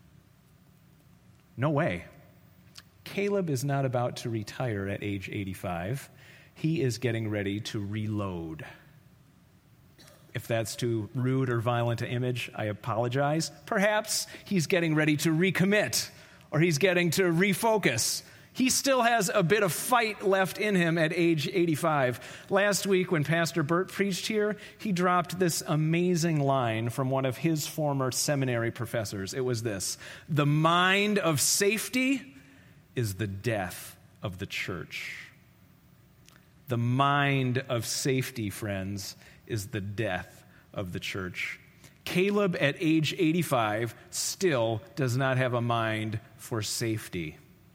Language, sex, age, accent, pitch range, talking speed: English, male, 40-59, American, 115-175 Hz, 135 wpm